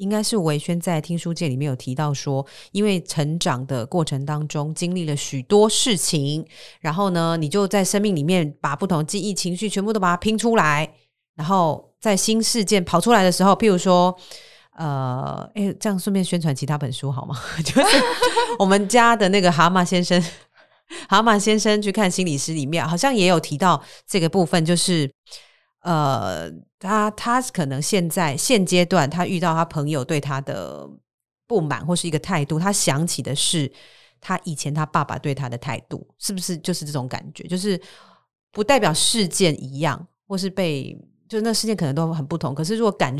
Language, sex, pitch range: Chinese, female, 150-195 Hz